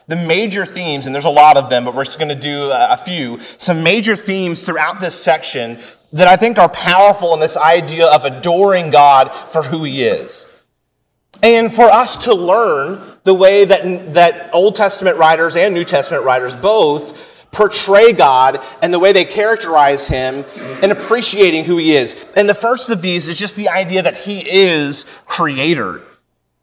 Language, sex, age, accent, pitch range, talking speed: English, male, 30-49, American, 150-200 Hz, 185 wpm